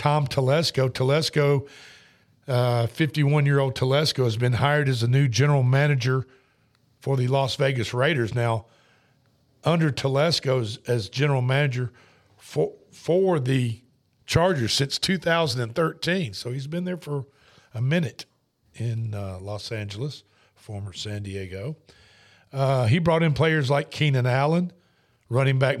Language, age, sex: English, 50-69, male